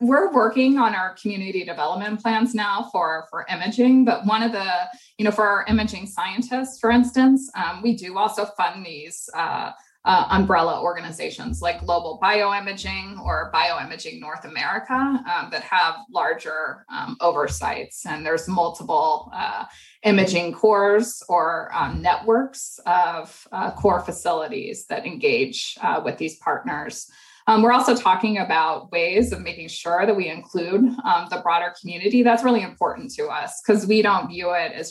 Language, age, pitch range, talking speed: English, 20-39, 175-235 Hz, 160 wpm